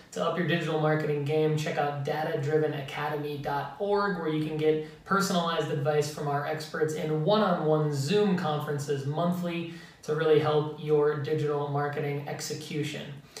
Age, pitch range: 20-39, 150-165 Hz